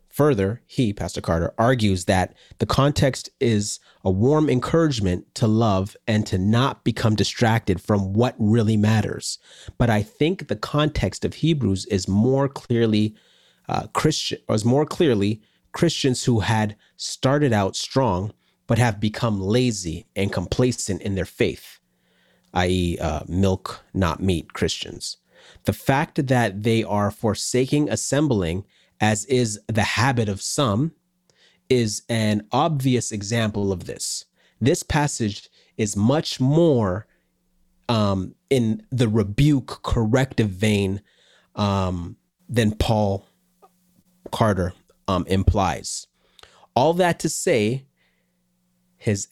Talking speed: 120 wpm